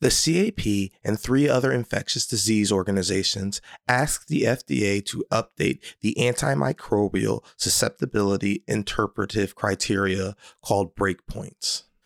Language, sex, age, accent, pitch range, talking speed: English, male, 30-49, American, 95-115 Hz, 100 wpm